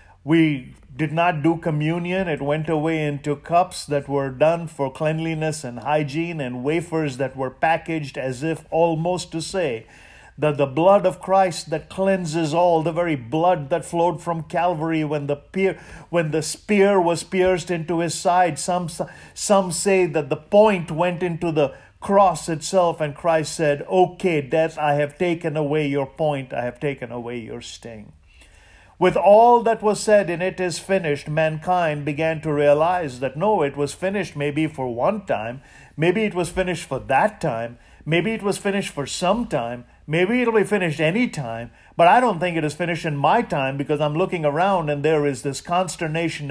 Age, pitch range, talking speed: 50-69, 145-180 Hz, 185 wpm